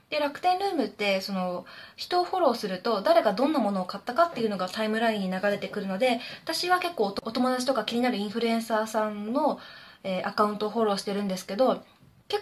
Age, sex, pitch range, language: 20-39, female, 205-290 Hz, Japanese